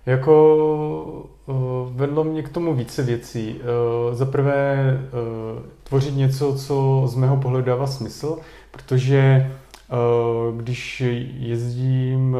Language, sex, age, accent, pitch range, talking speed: Czech, male, 30-49, native, 115-130 Hz, 90 wpm